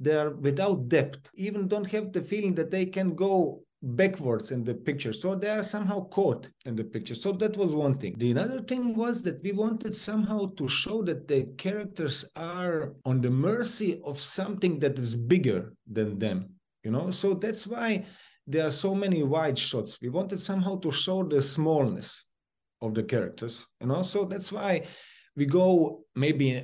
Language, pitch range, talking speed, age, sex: Turkish, 140-195 Hz, 190 wpm, 50-69, male